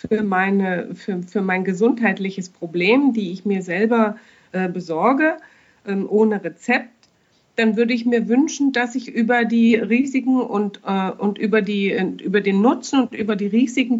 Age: 50-69